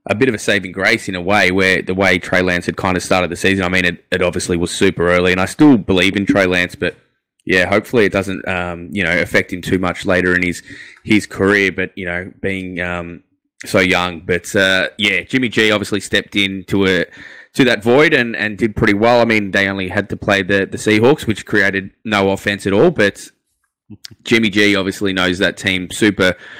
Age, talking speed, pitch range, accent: 10-29, 225 wpm, 95-105 Hz, Australian